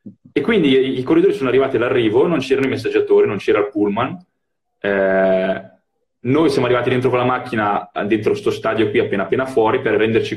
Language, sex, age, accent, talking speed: Italian, male, 20-39, native, 190 wpm